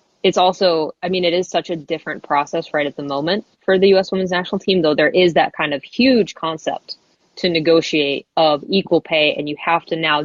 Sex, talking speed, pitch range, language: female, 225 wpm, 155-180 Hz, English